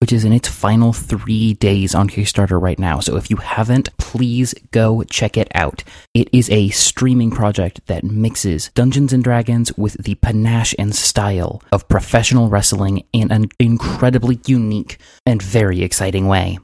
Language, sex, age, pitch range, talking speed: English, male, 20-39, 95-110 Hz, 160 wpm